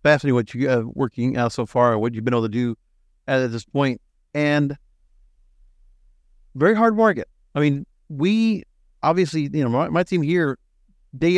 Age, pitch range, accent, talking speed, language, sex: 40-59, 125-165 Hz, American, 165 wpm, English, male